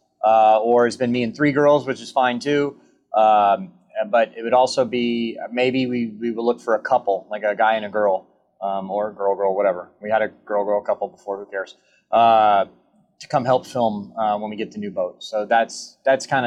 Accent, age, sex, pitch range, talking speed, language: American, 30-49, male, 110-145 Hz, 230 wpm, English